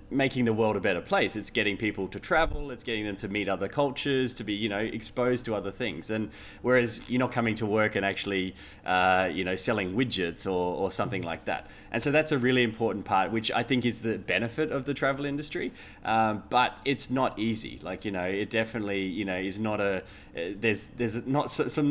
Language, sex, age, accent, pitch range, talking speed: English, male, 20-39, Australian, 100-125 Hz, 225 wpm